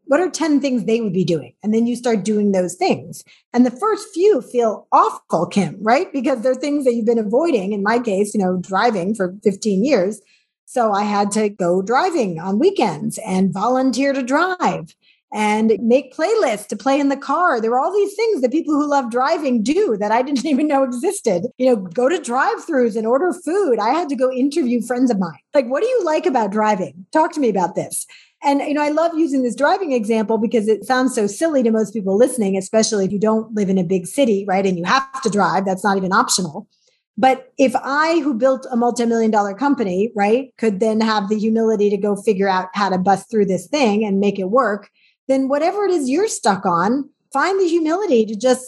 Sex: female